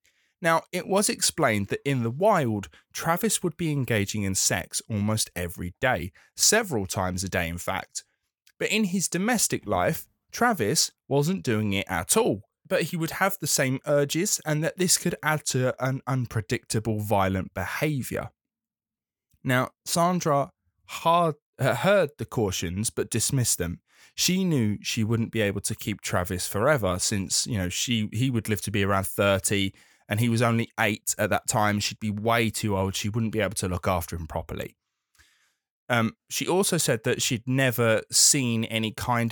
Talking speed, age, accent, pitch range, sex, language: 175 wpm, 20-39, British, 105-140 Hz, male, English